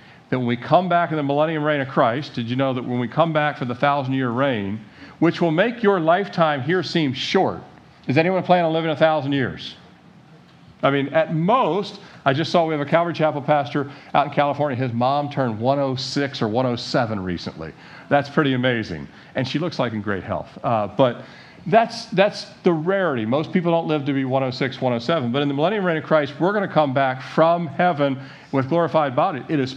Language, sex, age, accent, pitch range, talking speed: English, male, 50-69, American, 130-160 Hz, 215 wpm